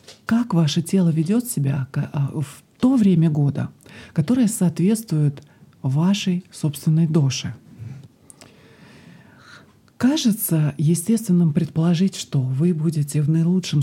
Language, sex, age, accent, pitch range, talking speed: Russian, male, 40-59, native, 135-175 Hz, 95 wpm